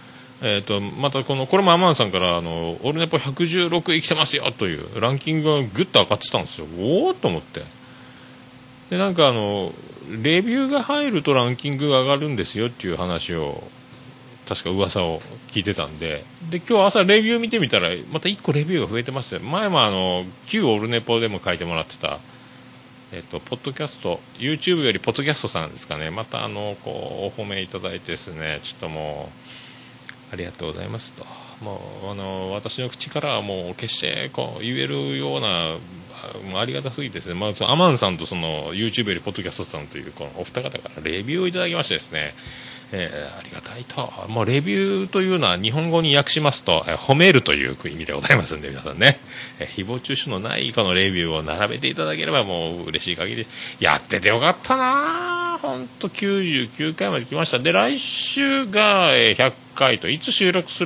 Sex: male